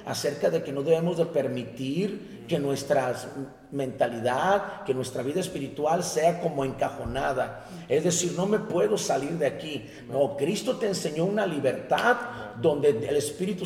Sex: male